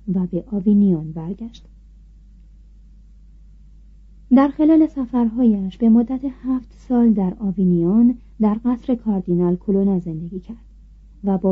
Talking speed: 110 wpm